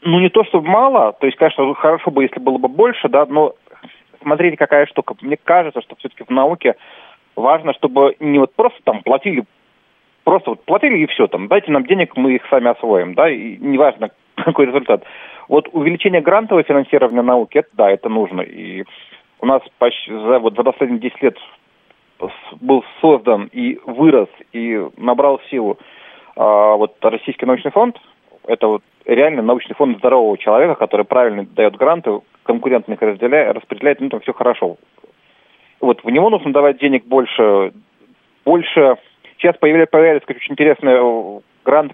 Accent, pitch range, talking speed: native, 125-170 Hz, 160 wpm